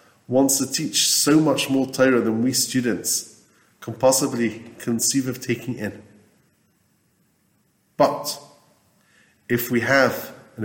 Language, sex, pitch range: English, male, 105-130 Hz